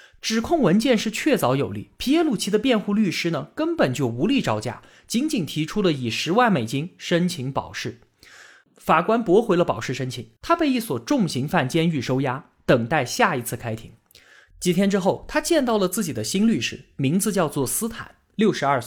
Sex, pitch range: male, 130-210 Hz